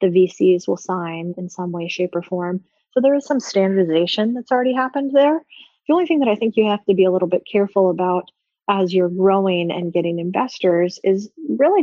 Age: 30-49